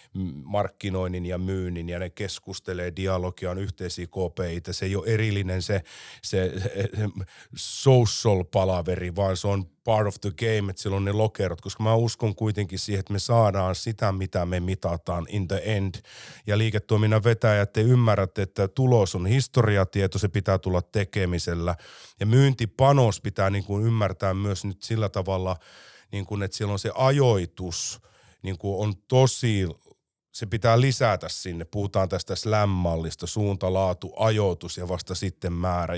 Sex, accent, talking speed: male, native, 150 wpm